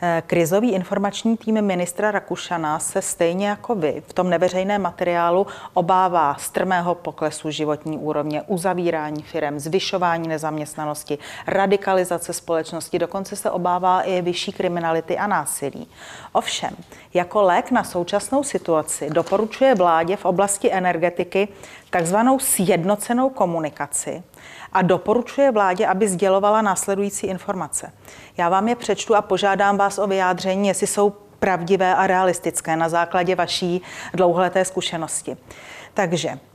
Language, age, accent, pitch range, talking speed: Czech, 30-49, native, 170-200 Hz, 120 wpm